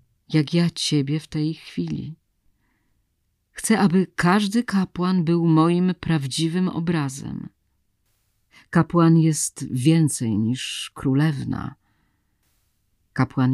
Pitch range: 125-170 Hz